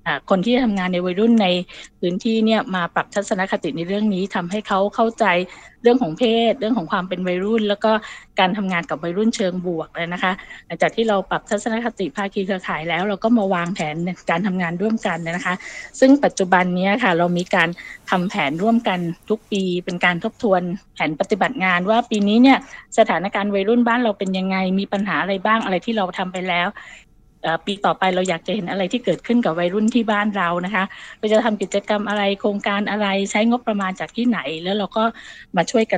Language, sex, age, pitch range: Thai, female, 20-39, 180-220 Hz